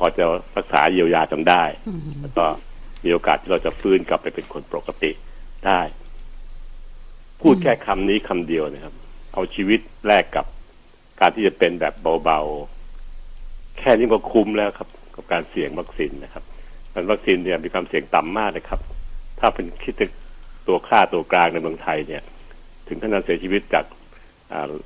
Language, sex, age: Thai, male, 60-79